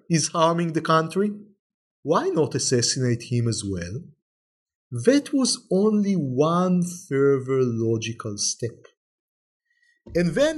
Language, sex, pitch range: English, male, 150-215 Hz